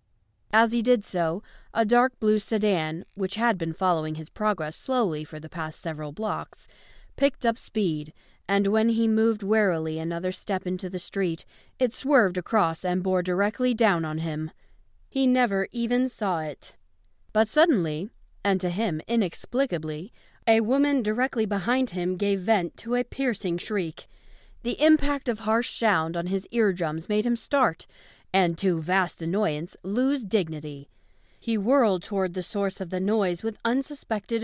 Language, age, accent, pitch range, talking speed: English, 40-59, American, 170-225 Hz, 160 wpm